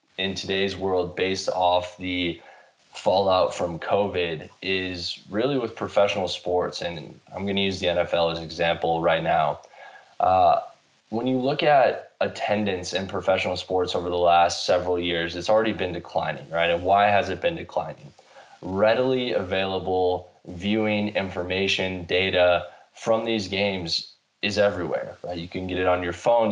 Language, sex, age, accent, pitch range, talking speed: English, male, 10-29, American, 90-105 Hz, 155 wpm